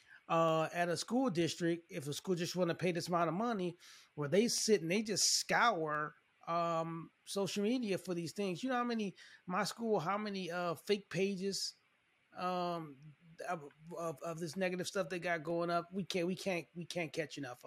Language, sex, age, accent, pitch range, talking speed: English, male, 20-39, American, 165-210 Hz, 200 wpm